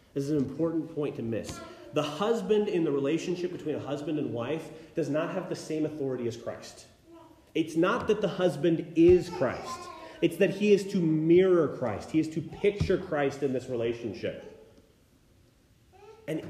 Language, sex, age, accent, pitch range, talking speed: English, male, 30-49, American, 140-180 Hz, 175 wpm